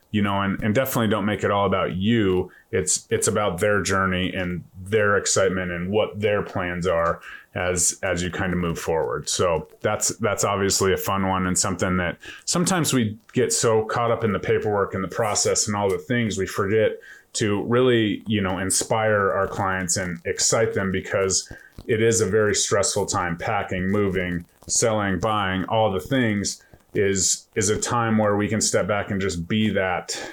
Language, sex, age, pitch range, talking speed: English, male, 30-49, 95-110 Hz, 190 wpm